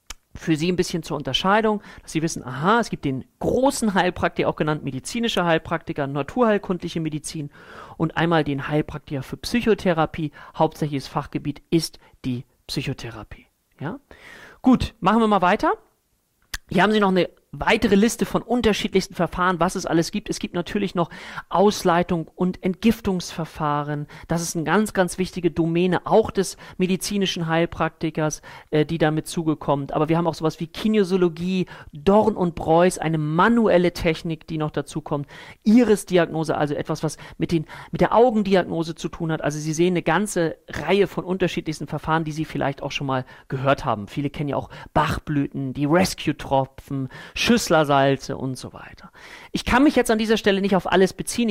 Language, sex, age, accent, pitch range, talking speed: German, male, 40-59, German, 150-190 Hz, 165 wpm